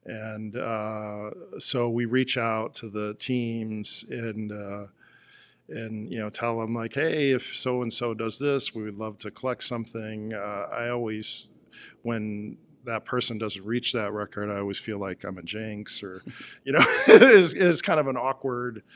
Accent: American